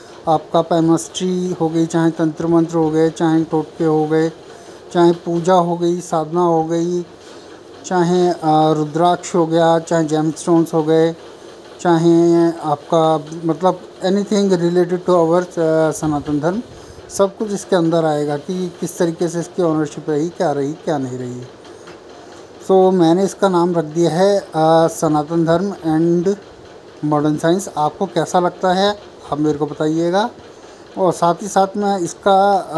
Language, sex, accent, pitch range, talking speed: Hindi, male, native, 155-180 Hz, 155 wpm